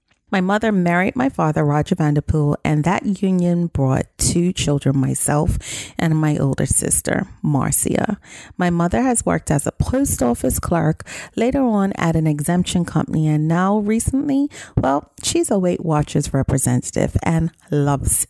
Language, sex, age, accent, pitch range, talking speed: English, female, 30-49, American, 150-205 Hz, 150 wpm